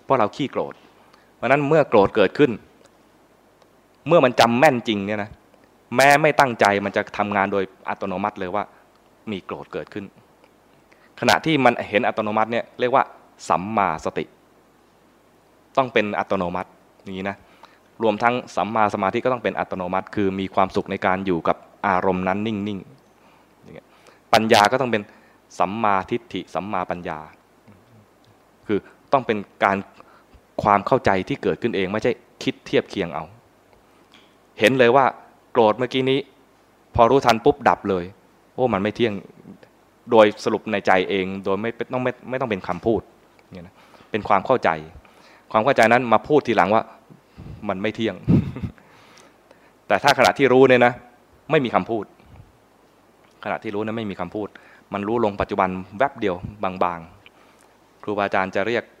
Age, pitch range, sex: 20-39, 95-120 Hz, male